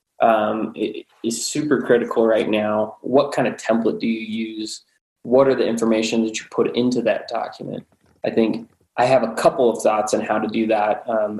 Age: 20-39